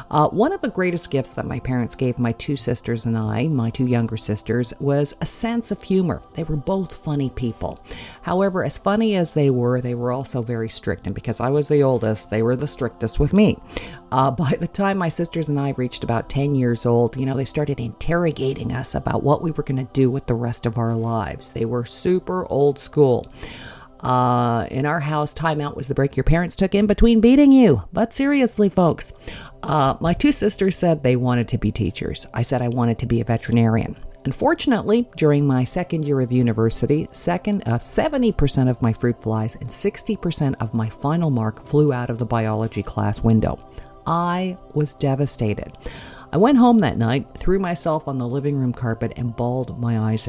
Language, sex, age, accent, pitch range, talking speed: English, female, 50-69, American, 120-170 Hz, 205 wpm